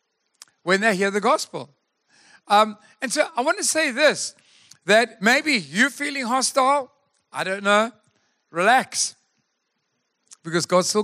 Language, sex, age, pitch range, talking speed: English, male, 50-69, 175-235 Hz, 135 wpm